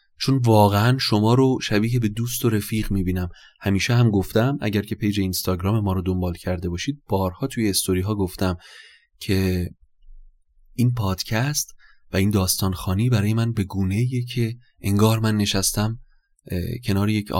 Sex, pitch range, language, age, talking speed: male, 95-110 Hz, Persian, 30-49, 150 wpm